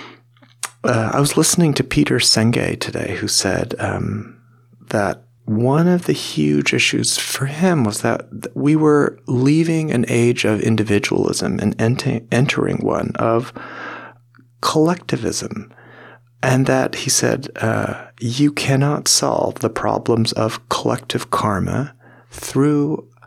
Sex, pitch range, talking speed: male, 115-145 Hz, 120 wpm